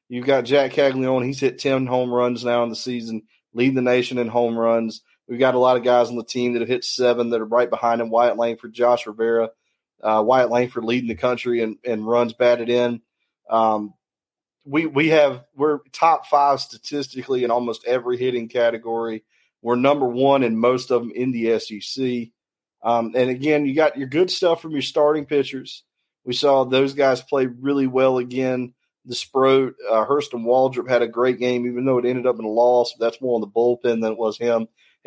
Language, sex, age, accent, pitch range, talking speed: English, male, 30-49, American, 115-130 Hz, 210 wpm